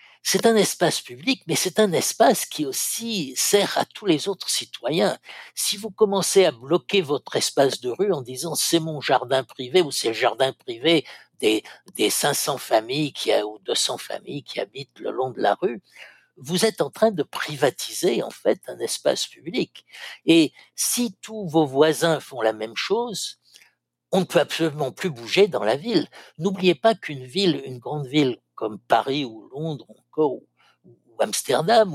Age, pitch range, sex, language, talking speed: 60-79, 140-210 Hz, male, French, 185 wpm